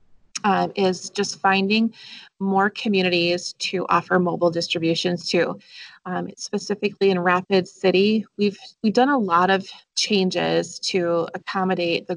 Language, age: English, 30-49